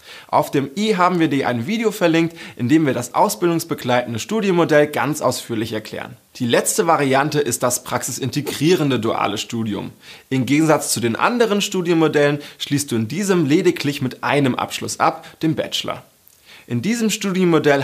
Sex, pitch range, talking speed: male, 120-170 Hz, 155 wpm